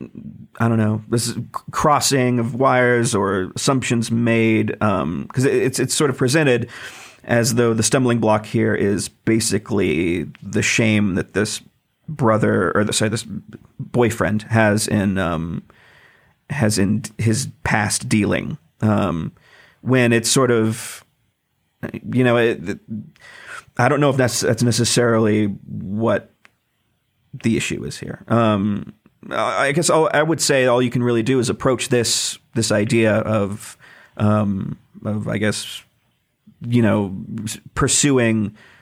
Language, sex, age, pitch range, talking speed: English, male, 40-59, 105-120 Hz, 140 wpm